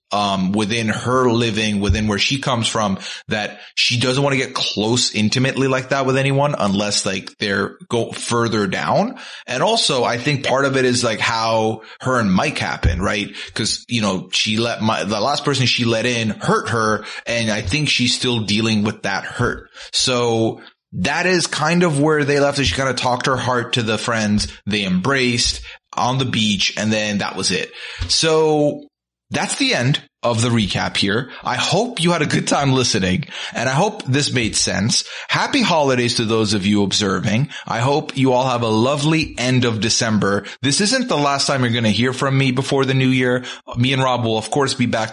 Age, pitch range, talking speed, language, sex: 30-49, 110-140 Hz, 205 wpm, English, male